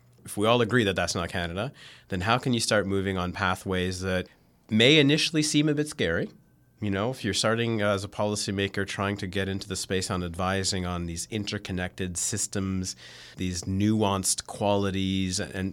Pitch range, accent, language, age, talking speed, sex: 90-110 Hz, American, English, 30-49, 185 wpm, male